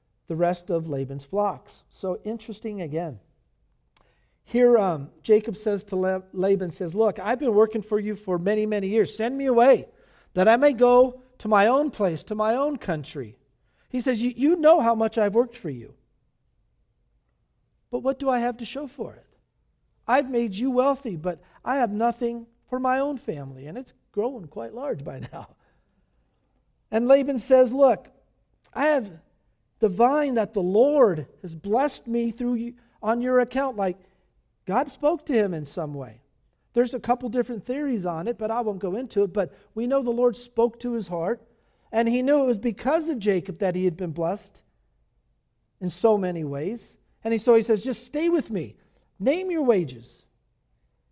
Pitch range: 180-245 Hz